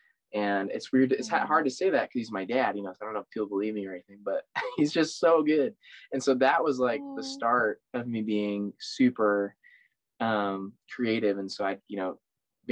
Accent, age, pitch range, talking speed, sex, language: American, 20-39, 95-140 Hz, 220 wpm, male, English